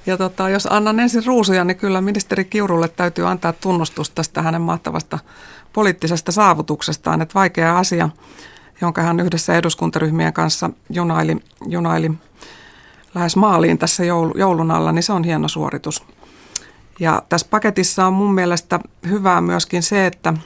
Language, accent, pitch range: Finnish, native, 155-180 Hz